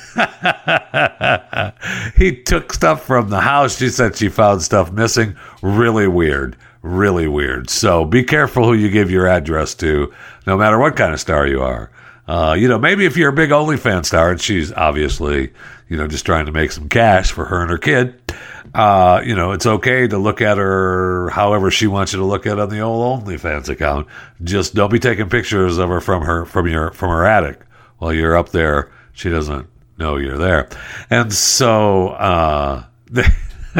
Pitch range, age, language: 85-120 Hz, 60-79, English